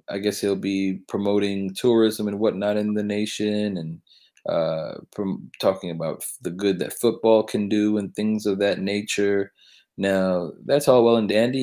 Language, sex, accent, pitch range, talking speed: English, male, American, 95-115 Hz, 170 wpm